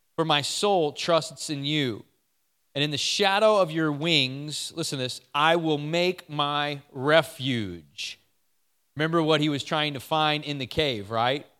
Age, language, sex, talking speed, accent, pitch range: 30-49, English, male, 160 wpm, American, 130-160 Hz